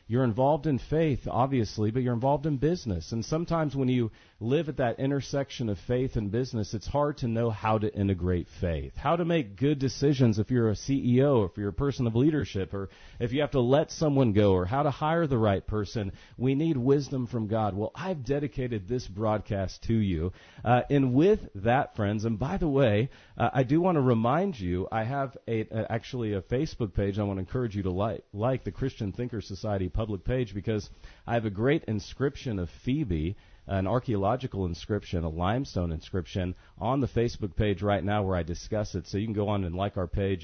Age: 40-59